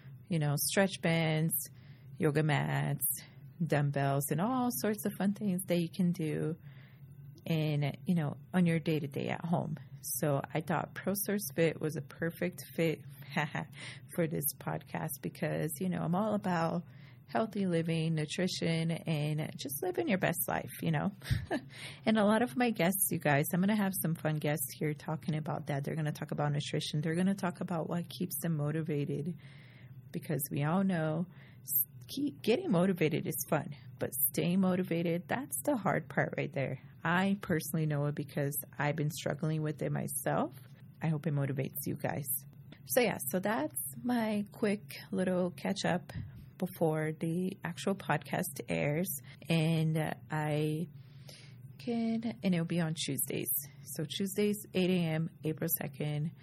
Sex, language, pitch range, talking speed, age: female, English, 140-180 Hz, 160 wpm, 30-49